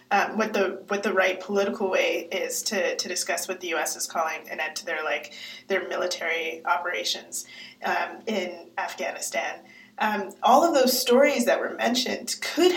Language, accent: English, American